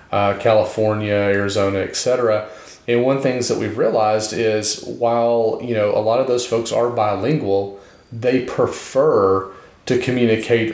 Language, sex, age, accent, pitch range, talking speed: English, male, 30-49, American, 95-115 Hz, 150 wpm